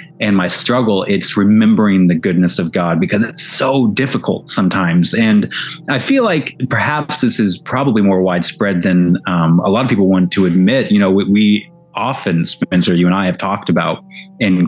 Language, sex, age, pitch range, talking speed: English, male, 30-49, 95-145 Hz, 185 wpm